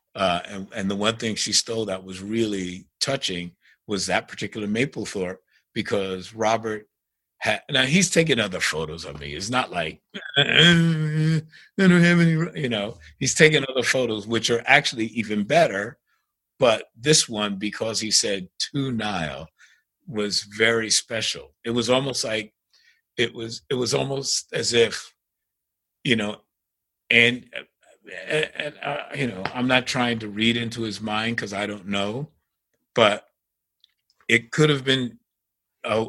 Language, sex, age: English, male, 50-69